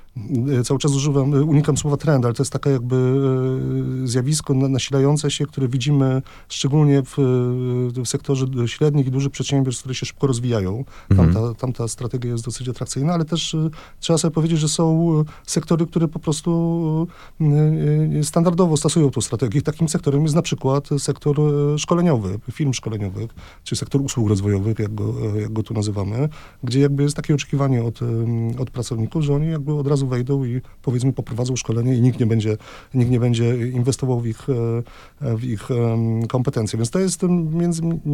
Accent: native